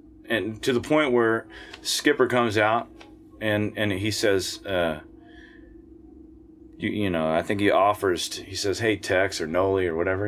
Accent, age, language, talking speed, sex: American, 30-49, English, 170 wpm, male